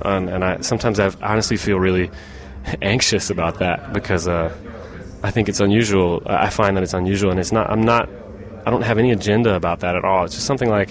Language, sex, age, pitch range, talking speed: English, male, 20-39, 90-105 Hz, 215 wpm